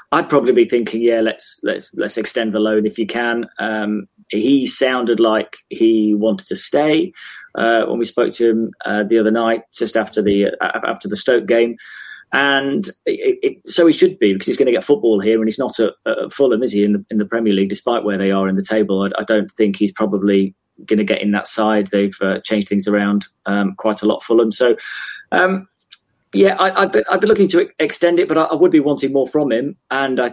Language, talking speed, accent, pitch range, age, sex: English, 235 wpm, British, 105-120 Hz, 30-49, male